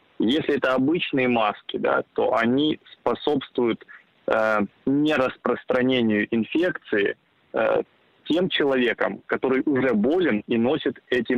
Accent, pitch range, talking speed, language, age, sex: native, 110-130 Hz, 100 wpm, Russian, 20-39, male